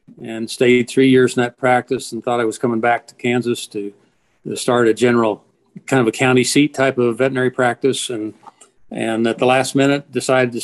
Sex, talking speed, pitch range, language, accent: male, 205 wpm, 115-130 Hz, English, American